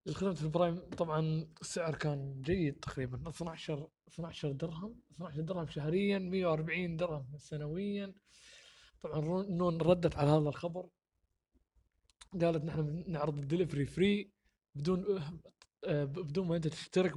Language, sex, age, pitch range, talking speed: Arabic, male, 20-39, 155-180 Hz, 125 wpm